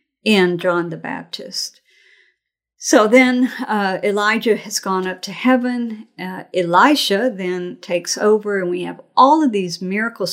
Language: English